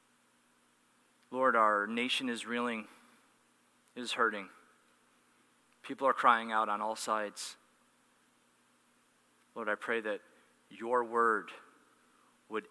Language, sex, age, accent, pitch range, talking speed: English, male, 30-49, American, 105-135 Hz, 100 wpm